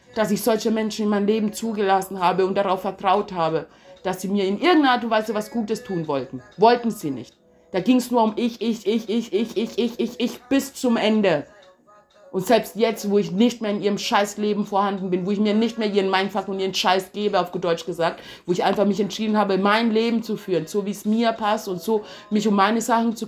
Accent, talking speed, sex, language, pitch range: German, 240 wpm, female, German, 195-240 Hz